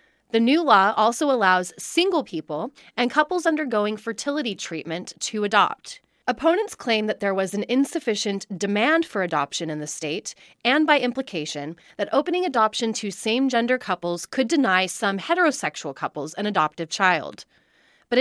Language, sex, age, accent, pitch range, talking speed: English, female, 30-49, American, 180-255 Hz, 150 wpm